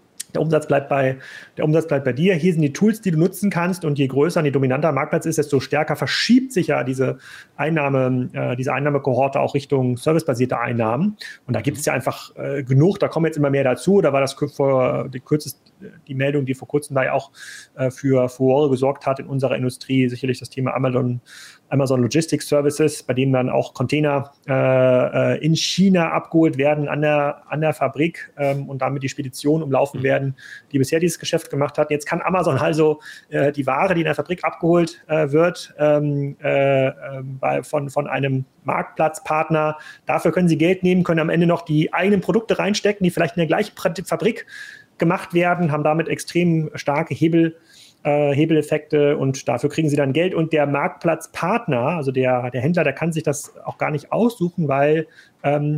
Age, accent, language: 30-49, German, German